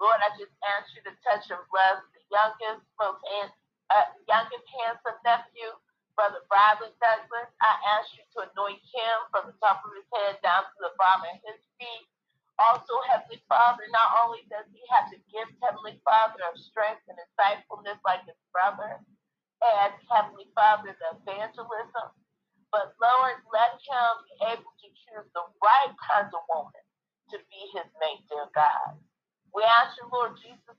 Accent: American